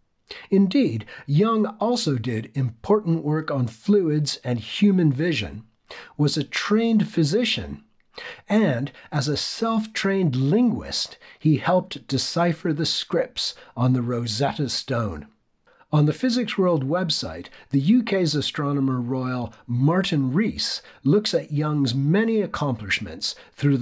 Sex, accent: male, American